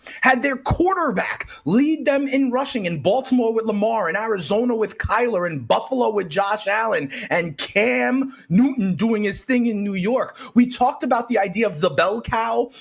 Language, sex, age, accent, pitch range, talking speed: English, male, 30-49, American, 220-265 Hz, 180 wpm